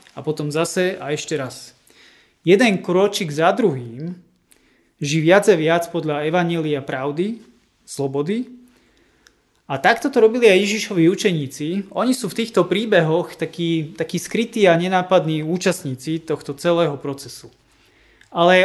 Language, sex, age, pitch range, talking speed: Slovak, male, 30-49, 150-185 Hz, 130 wpm